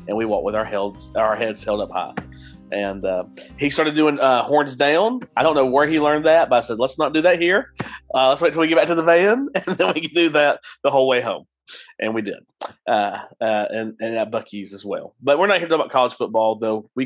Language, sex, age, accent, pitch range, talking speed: English, male, 30-49, American, 110-150 Hz, 265 wpm